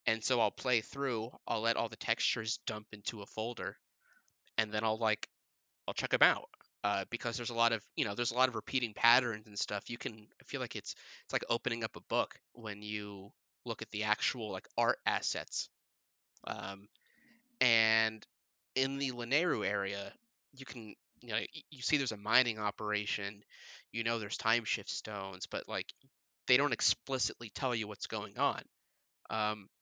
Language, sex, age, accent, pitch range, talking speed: English, male, 30-49, American, 105-120 Hz, 185 wpm